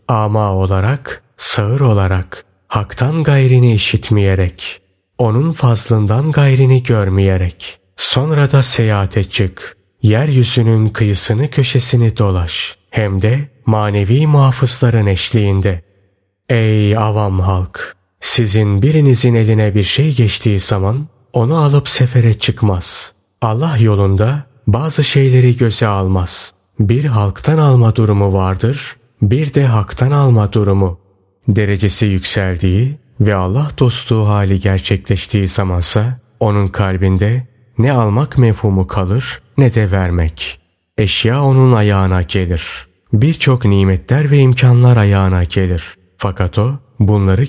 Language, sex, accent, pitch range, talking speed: Turkish, male, native, 95-125 Hz, 105 wpm